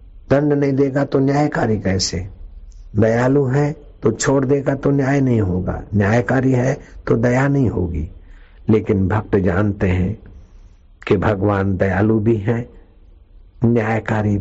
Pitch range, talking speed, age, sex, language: 90-120 Hz, 130 wpm, 60-79, male, Hindi